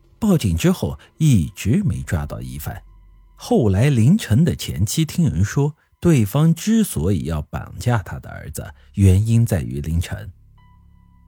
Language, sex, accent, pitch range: Chinese, male, native, 90-140 Hz